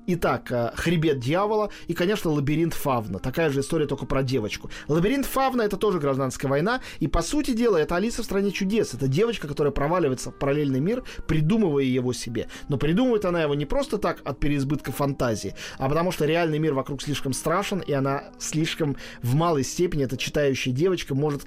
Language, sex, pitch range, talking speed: Russian, male, 130-165 Hz, 185 wpm